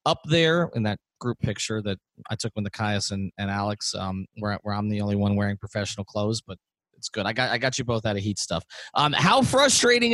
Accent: American